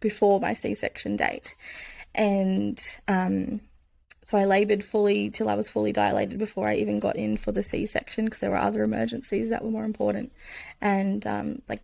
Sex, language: female, English